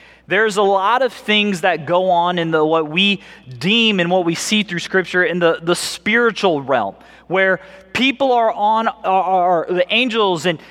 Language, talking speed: English, 170 wpm